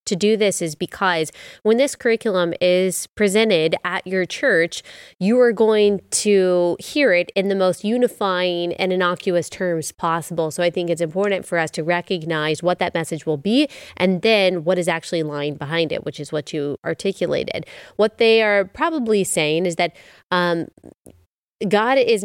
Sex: female